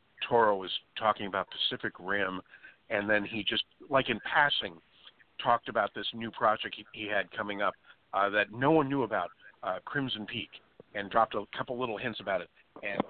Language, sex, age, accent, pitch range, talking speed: English, male, 50-69, American, 100-120 Hz, 190 wpm